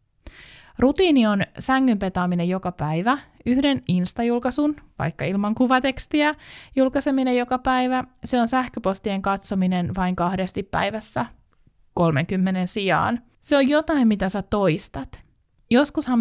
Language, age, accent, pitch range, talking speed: Finnish, 20-39, native, 175-240 Hz, 105 wpm